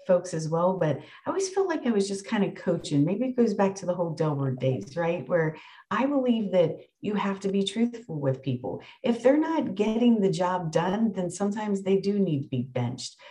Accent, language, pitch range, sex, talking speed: American, English, 175-215 Hz, female, 225 wpm